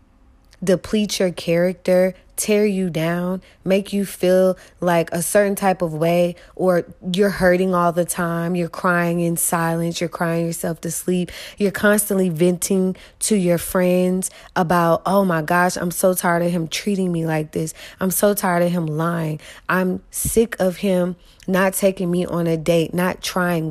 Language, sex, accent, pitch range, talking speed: English, female, American, 165-190 Hz, 170 wpm